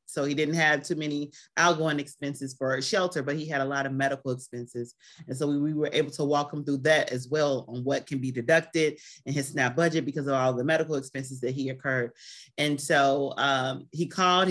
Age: 30-49